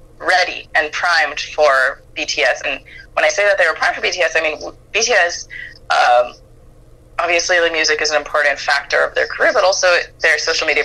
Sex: female